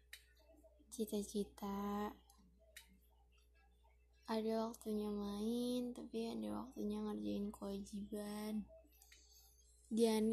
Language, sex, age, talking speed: Indonesian, female, 10-29, 60 wpm